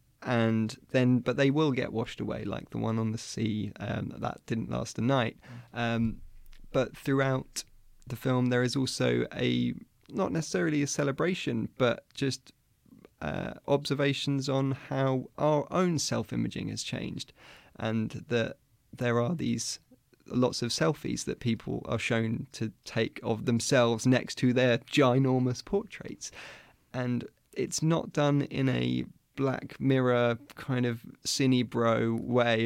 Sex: male